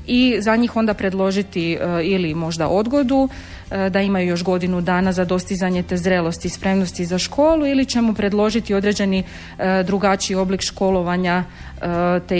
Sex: female